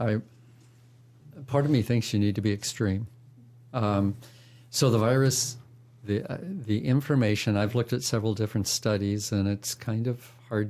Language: English